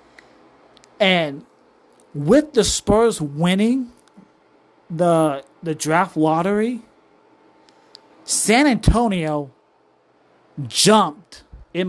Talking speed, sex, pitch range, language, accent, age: 65 wpm, male, 155-195 Hz, English, American, 40-59